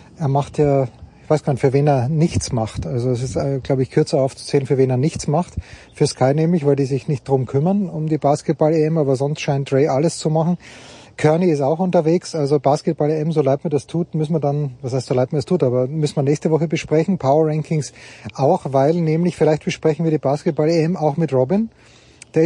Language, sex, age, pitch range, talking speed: German, male, 30-49, 130-155 Hz, 220 wpm